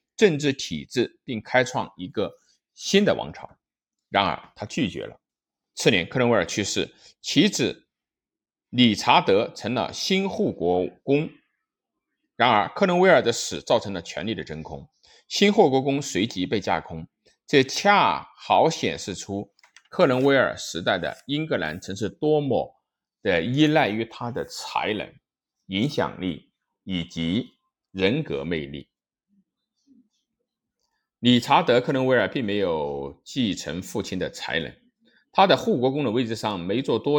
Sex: male